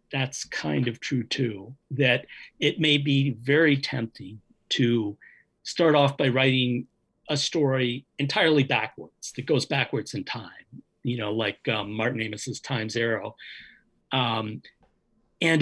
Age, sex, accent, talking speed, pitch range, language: 50-69, male, American, 130 wpm, 120-160 Hz, English